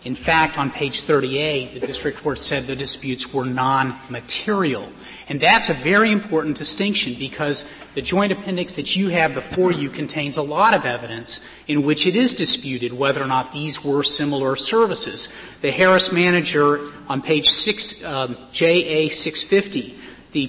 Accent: American